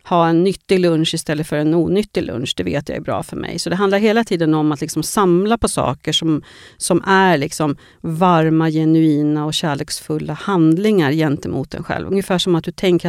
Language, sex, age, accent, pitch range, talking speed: Swedish, female, 40-59, native, 160-195 Hz, 200 wpm